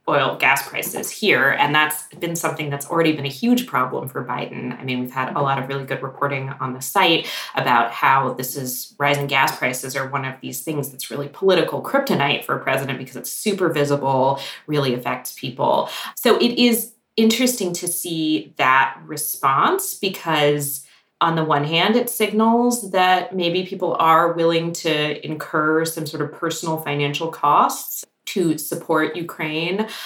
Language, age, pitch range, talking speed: English, 20-39, 140-175 Hz, 170 wpm